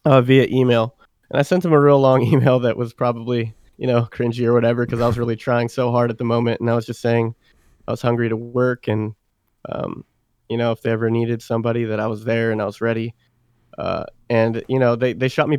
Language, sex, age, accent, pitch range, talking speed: English, male, 20-39, American, 115-125 Hz, 245 wpm